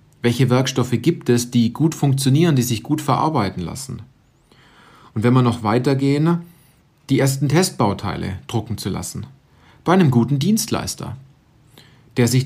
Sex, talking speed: male, 140 wpm